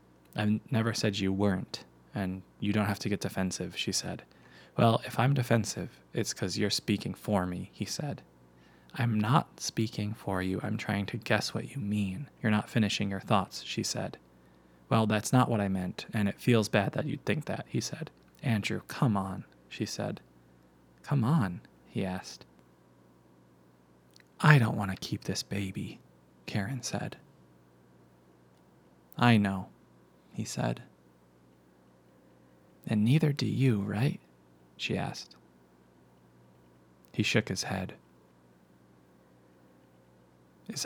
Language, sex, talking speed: English, male, 140 wpm